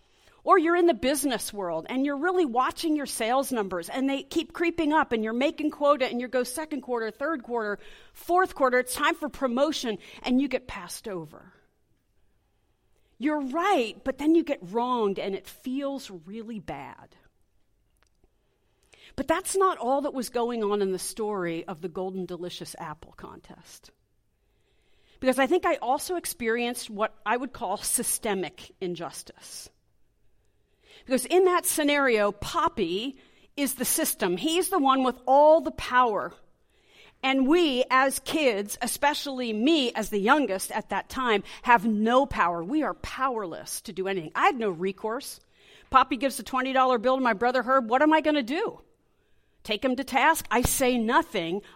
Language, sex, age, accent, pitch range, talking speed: English, female, 40-59, American, 205-285 Hz, 165 wpm